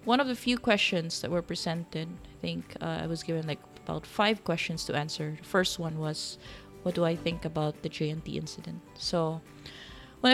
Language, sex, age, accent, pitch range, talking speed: English, female, 20-39, Filipino, 160-185 Hz, 195 wpm